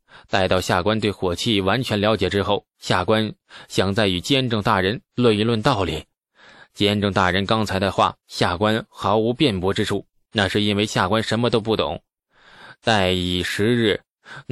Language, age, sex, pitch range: Chinese, 20-39, male, 100-130 Hz